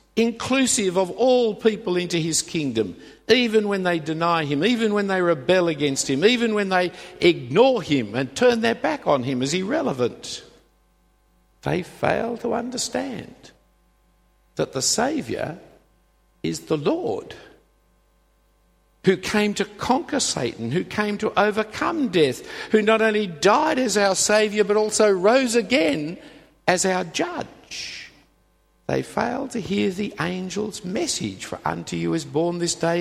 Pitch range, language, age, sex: 165-220 Hz, English, 50-69, male